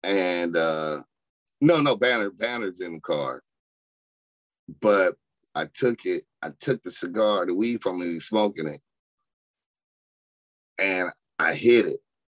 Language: English